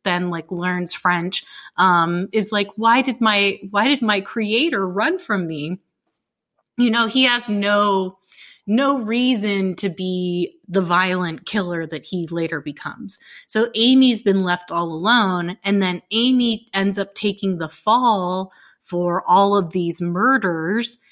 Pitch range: 175-215 Hz